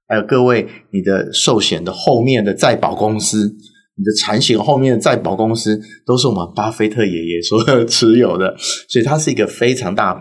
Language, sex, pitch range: Chinese, male, 100-135 Hz